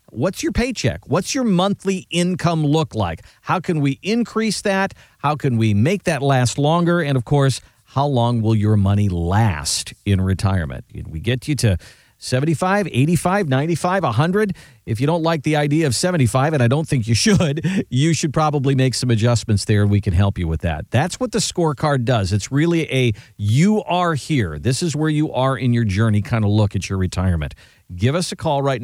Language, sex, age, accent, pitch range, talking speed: English, male, 50-69, American, 110-170 Hz, 200 wpm